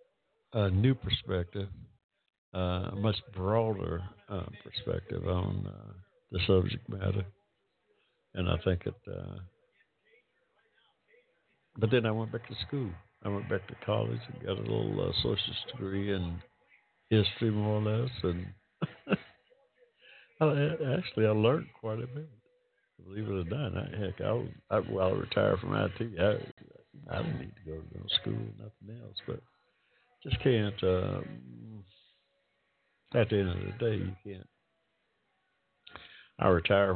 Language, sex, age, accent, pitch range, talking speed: English, male, 60-79, American, 90-115 Hz, 145 wpm